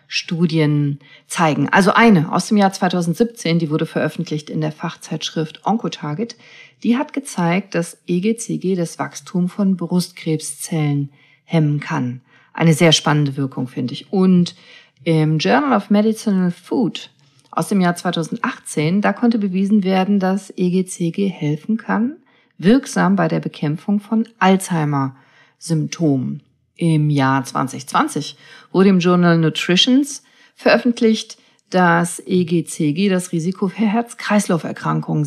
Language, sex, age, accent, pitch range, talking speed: German, female, 40-59, German, 155-205 Hz, 120 wpm